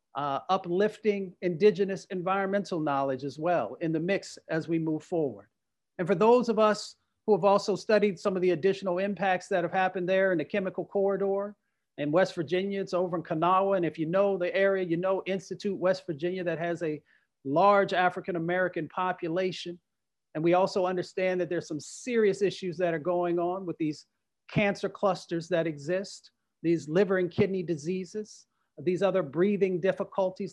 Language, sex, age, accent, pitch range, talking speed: English, male, 40-59, American, 175-205 Hz, 175 wpm